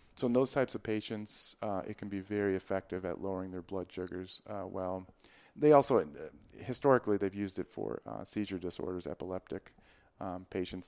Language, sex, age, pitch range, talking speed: English, male, 30-49, 95-115 Hz, 175 wpm